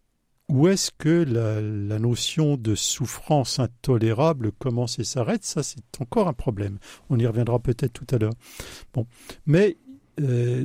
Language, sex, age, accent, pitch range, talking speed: French, male, 60-79, French, 115-155 Hz, 150 wpm